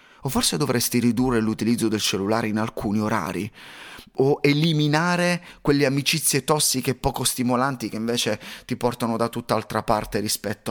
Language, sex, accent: Italian, male, native